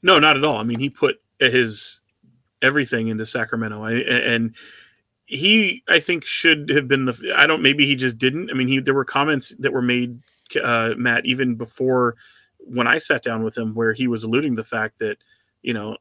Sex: male